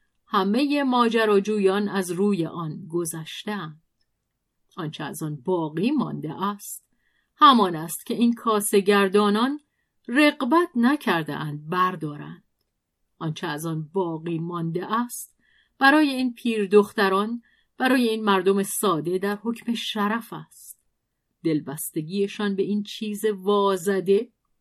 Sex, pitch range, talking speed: female, 170-225 Hz, 105 wpm